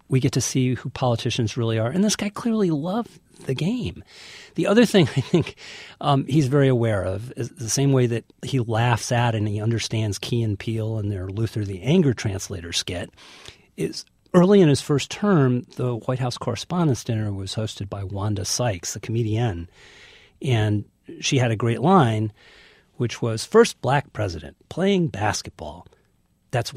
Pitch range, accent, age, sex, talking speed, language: 110-165 Hz, American, 50-69, male, 175 wpm, English